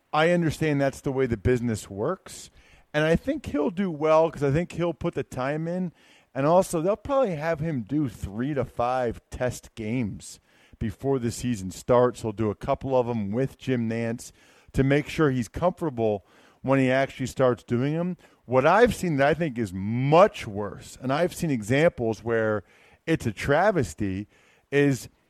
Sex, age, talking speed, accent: male, 40-59, 180 wpm, American